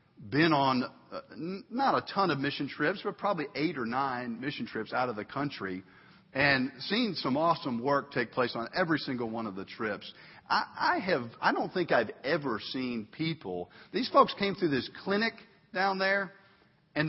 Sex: male